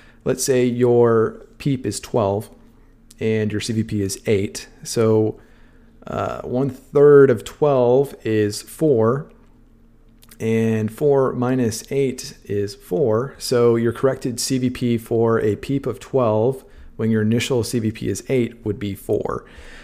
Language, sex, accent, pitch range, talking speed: English, male, American, 110-125 Hz, 130 wpm